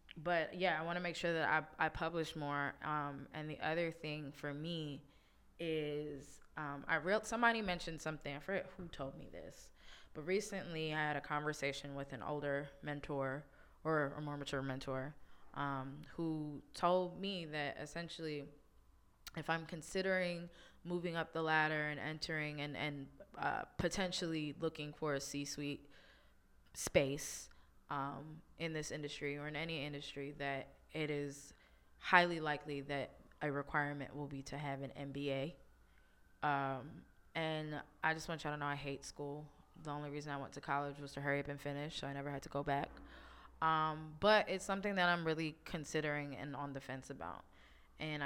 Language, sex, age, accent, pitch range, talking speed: English, female, 20-39, American, 140-160 Hz, 170 wpm